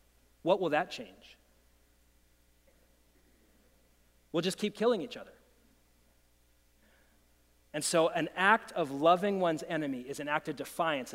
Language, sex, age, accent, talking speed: English, male, 30-49, American, 125 wpm